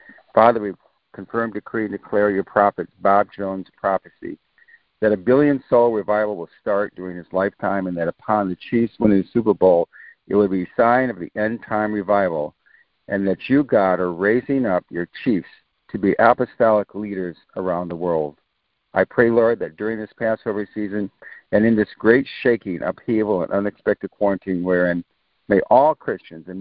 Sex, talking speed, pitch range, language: male, 170 wpm, 95-115 Hz, English